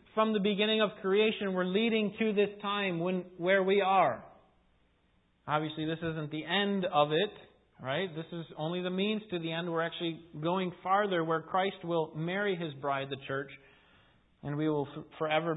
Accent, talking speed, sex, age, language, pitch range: American, 180 wpm, male, 40-59, English, 140-190 Hz